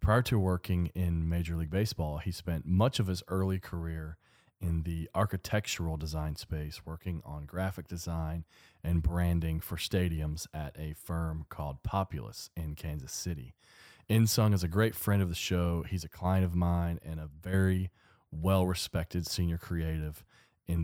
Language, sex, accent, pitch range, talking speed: English, male, American, 80-95 Hz, 160 wpm